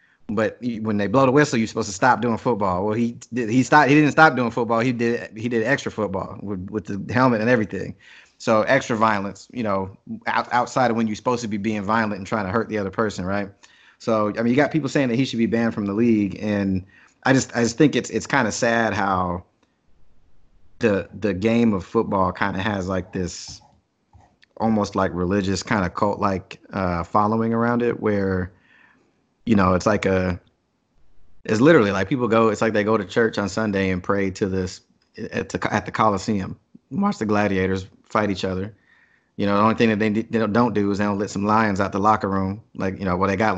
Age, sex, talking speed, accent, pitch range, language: 30-49, male, 225 wpm, American, 100-120 Hz, English